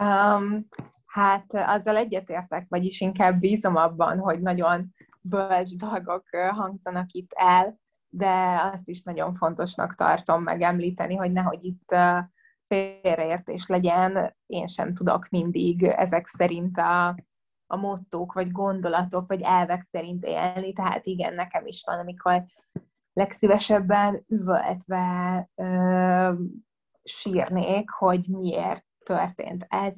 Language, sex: Hungarian, female